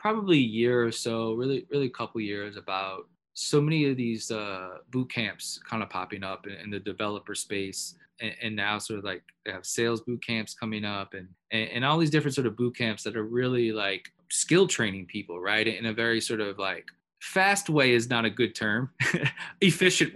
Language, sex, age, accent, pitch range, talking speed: English, male, 20-39, American, 105-135 Hz, 215 wpm